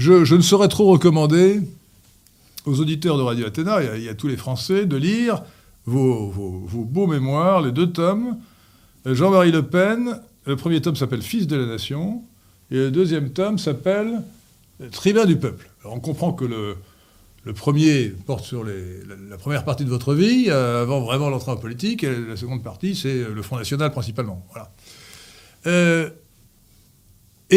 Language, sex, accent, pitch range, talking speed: French, male, French, 110-165 Hz, 190 wpm